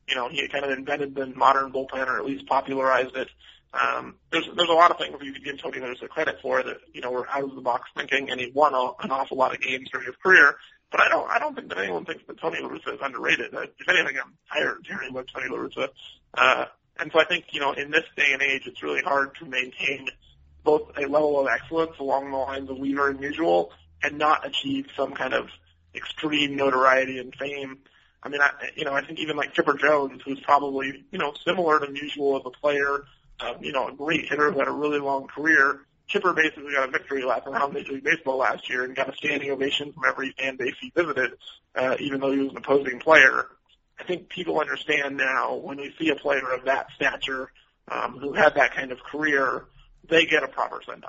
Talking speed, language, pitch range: 235 wpm, English, 130-145 Hz